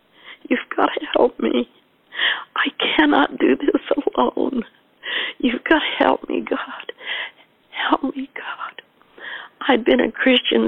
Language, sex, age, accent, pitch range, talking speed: English, female, 60-79, American, 175-245 Hz, 130 wpm